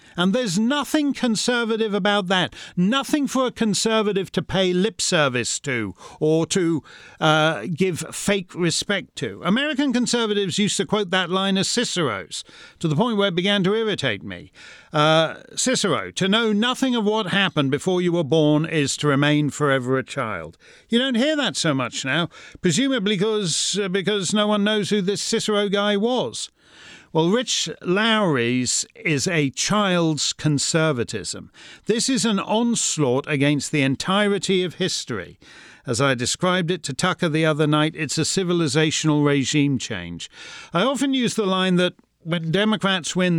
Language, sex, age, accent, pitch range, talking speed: English, male, 40-59, British, 155-210 Hz, 160 wpm